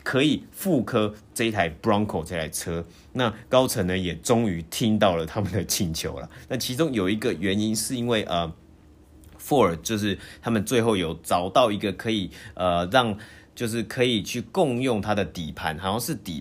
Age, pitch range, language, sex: 30-49, 90-115 Hz, Chinese, male